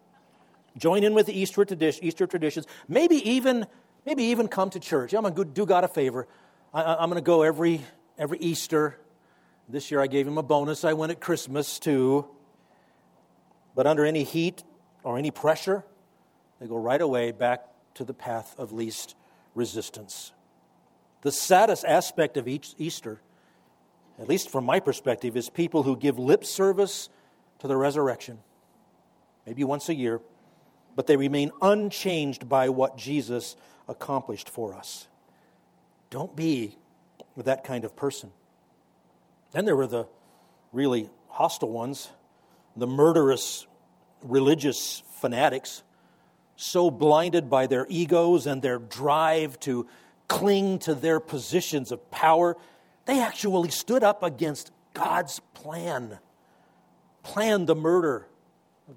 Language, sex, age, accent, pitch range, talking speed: English, male, 50-69, American, 130-175 Hz, 135 wpm